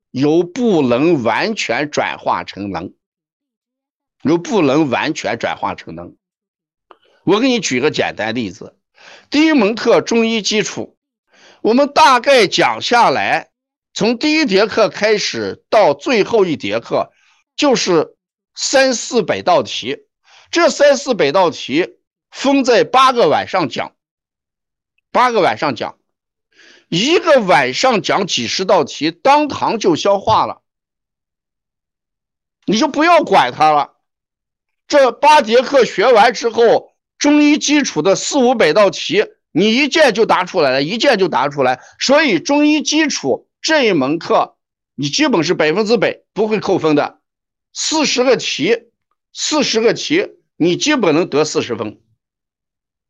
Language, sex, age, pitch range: Chinese, male, 50-69, 200-300 Hz